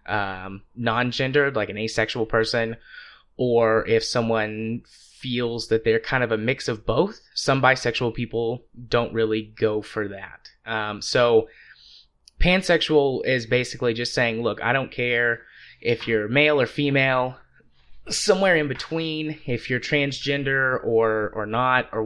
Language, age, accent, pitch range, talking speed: English, 20-39, American, 110-125 Hz, 140 wpm